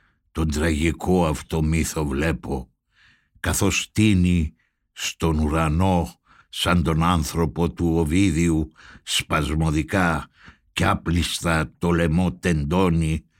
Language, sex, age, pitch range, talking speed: Greek, male, 60-79, 80-95 Hz, 90 wpm